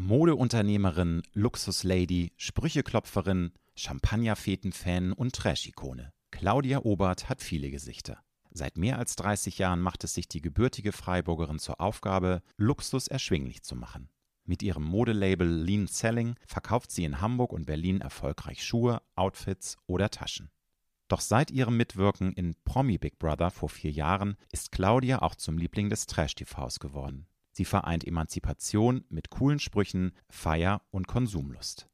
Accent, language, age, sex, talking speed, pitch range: German, German, 40-59, male, 135 wpm, 85-110 Hz